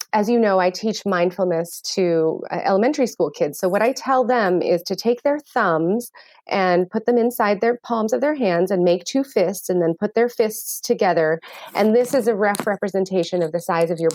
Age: 30-49